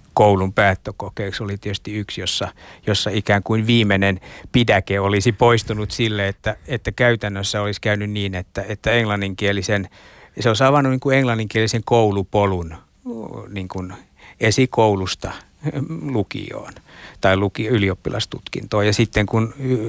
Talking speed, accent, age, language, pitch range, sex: 120 wpm, native, 60-79, Finnish, 100-120 Hz, male